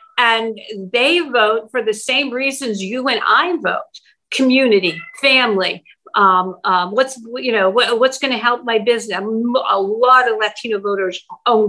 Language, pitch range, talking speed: English, 205-260 Hz, 160 wpm